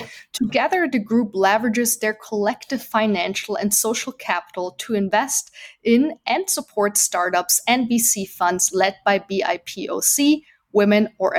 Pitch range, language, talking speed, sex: 195-260 Hz, English, 125 wpm, female